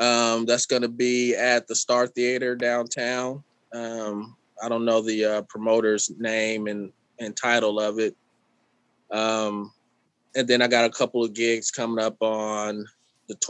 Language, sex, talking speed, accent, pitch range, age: English, male, 160 wpm, American, 105-130 Hz, 20-39